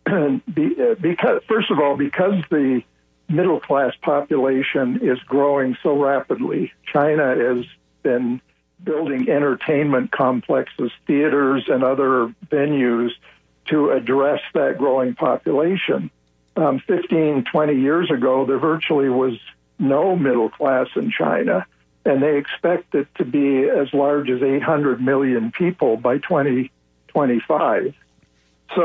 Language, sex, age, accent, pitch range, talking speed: English, male, 60-79, American, 130-155 Hz, 110 wpm